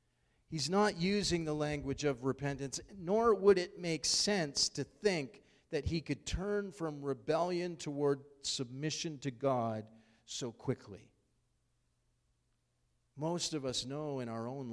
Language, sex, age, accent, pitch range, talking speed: English, male, 40-59, American, 125-170 Hz, 135 wpm